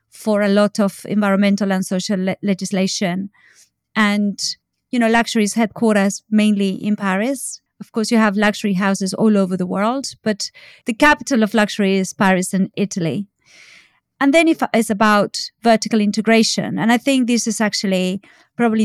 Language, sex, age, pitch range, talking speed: English, female, 30-49, 195-225 Hz, 155 wpm